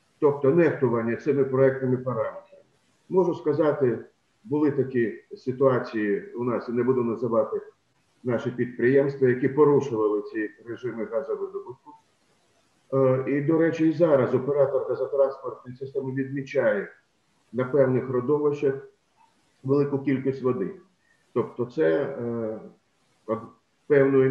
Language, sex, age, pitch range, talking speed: Ukrainian, male, 50-69, 125-150 Hz, 105 wpm